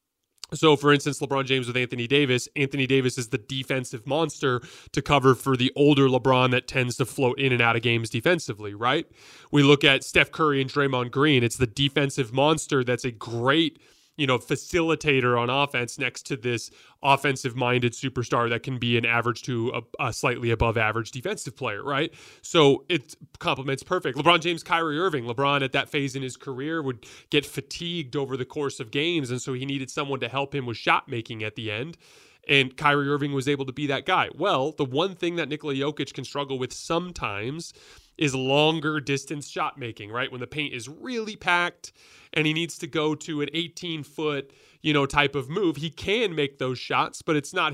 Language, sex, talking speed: English, male, 200 wpm